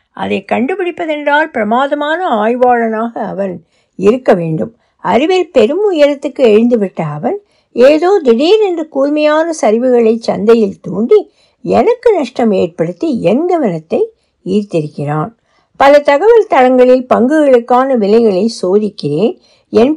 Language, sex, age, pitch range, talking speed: Tamil, female, 60-79, 205-310 Hz, 90 wpm